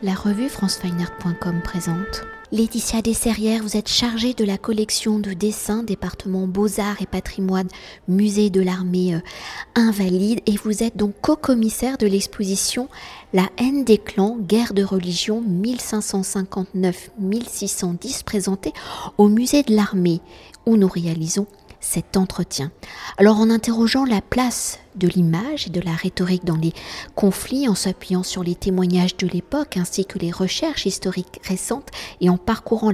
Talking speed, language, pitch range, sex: 140 wpm, French, 180-220 Hz, female